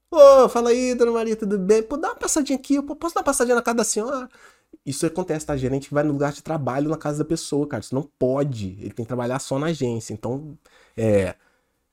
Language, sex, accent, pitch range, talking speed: Portuguese, male, Brazilian, 125-200 Hz, 245 wpm